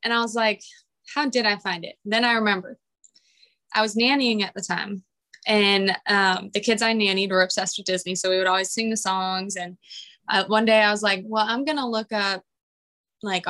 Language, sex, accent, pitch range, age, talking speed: English, female, American, 190-235 Hz, 20-39, 215 wpm